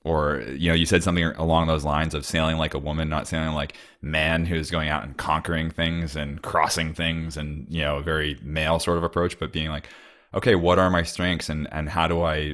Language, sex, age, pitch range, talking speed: English, male, 20-39, 75-80 Hz, 235 wpm